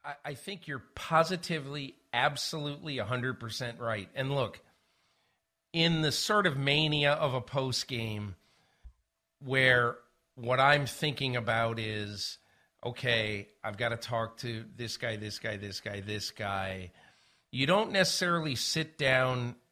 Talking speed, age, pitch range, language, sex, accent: 130 wpm, 50-69, 110-155 Hz, English, male, American